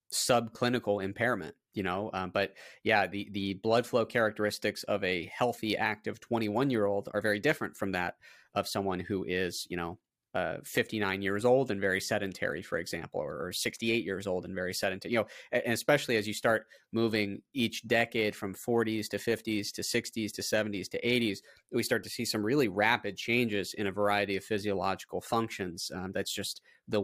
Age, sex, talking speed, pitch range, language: 30-49, male, 190 wpm, 100-120 Hz, English